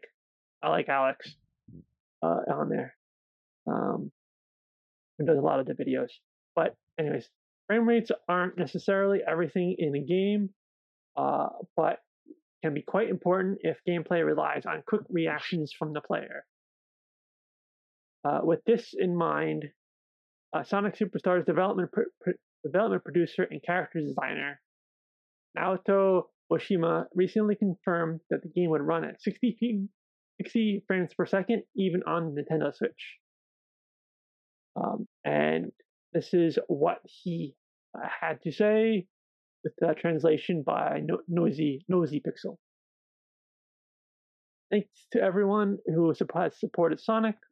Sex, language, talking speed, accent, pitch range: male, English, 120 wpm, American, 165-205 Hz